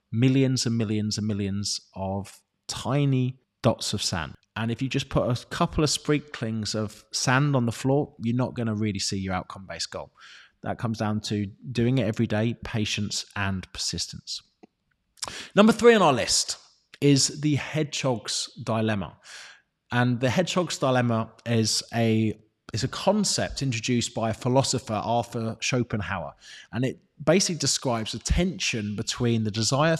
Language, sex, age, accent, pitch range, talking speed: English, male, 20-39, British, 110-140 Hz, 155 wpm